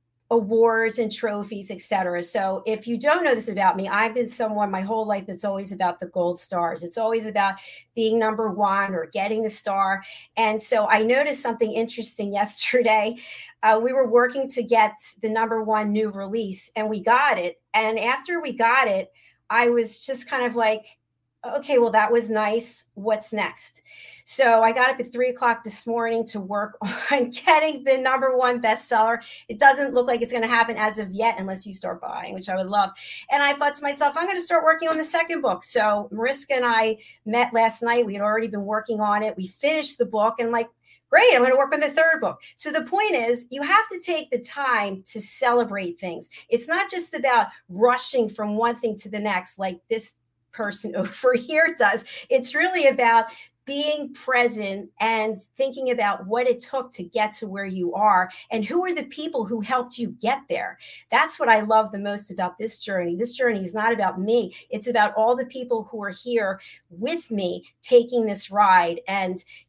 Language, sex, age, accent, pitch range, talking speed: English, female, 40-59, American, 205-250 Hz, 205 wpm